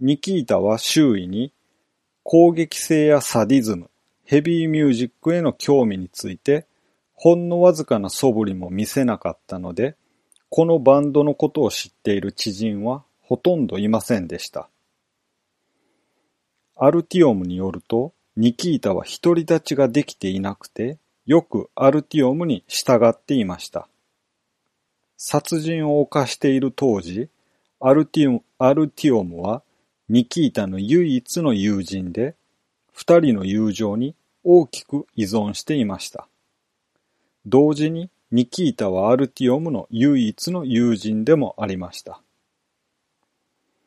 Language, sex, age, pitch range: Japanese, male, 40-59, 110-160 Hz